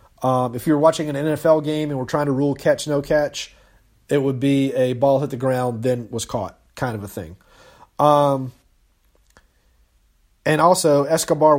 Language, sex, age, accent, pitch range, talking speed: English, male, 30-49, American, 130-155 Hz, 165 wpm